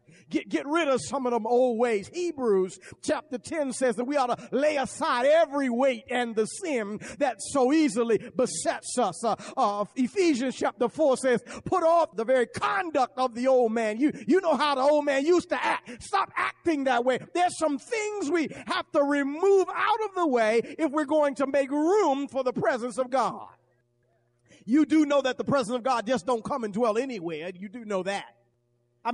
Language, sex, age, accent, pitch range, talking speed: English, male, 40-59, American, 195-290 Hz, 205 wpm